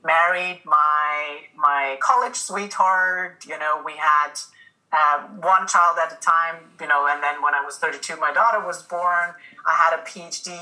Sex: female